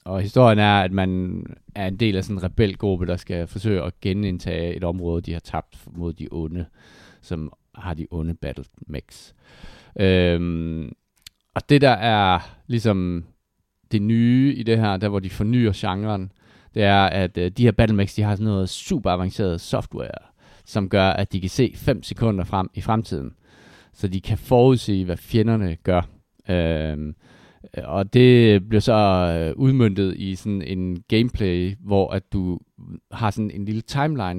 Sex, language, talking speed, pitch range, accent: male, Danish, 165 wpm, 90-110 Hz, native